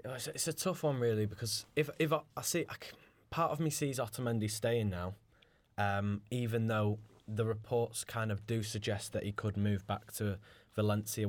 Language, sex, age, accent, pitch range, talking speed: English, male, 10-29, British, 100-115 Hz, 190 wpm